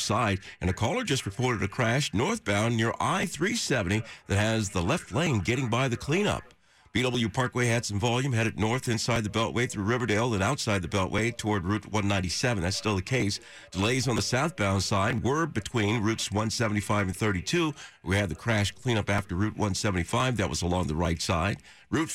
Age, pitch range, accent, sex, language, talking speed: 50-69, 100-130 Hz, American, male, English, 185 wpm